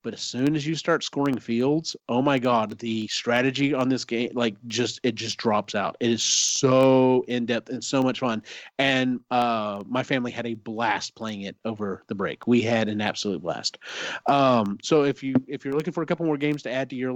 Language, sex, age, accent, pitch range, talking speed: English, male, 30-49, American, 120-160 Hz, 225 wpm